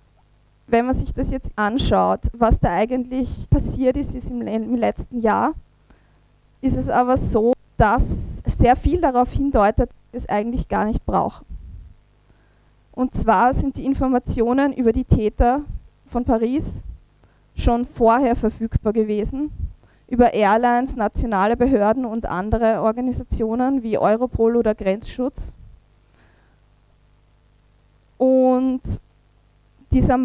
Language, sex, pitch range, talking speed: German, female, 200-245 Hz, 115 wpm